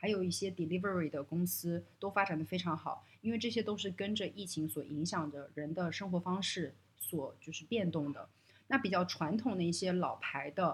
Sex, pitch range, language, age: female, 160-200 Hz, Chinese, 30-49